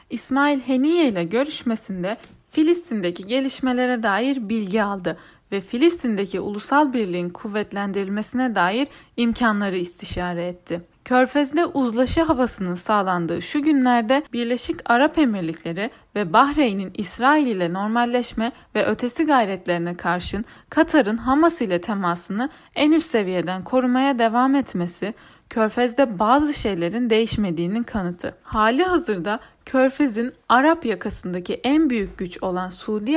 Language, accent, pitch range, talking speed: Turkish, native, 190-265 Hz, 110 wpm